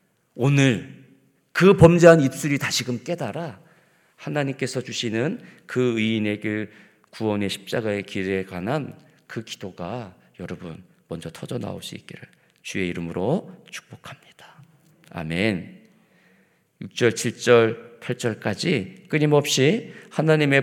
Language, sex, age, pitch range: Korean, male, 40-59, 110-155 Hz